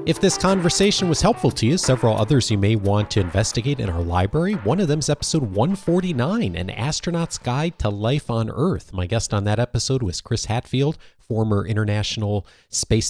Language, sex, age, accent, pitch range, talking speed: English, male, 40-59, American, 90-120 Hz, 185 wpm